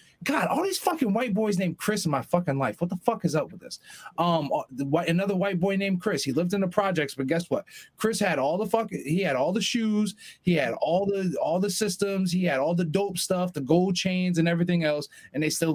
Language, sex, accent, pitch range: English, male, American, 165-210 Hz